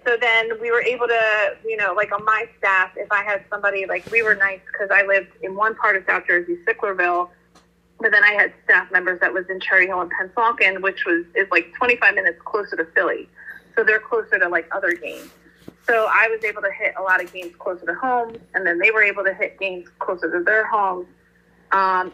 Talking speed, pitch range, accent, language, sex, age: 230 wpm, 180-230 Hz, American, English, female, 30-49